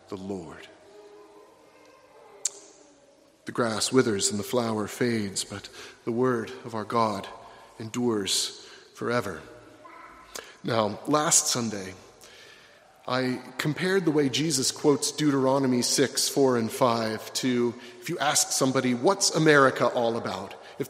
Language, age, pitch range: English, 30-49, 120-155 Hz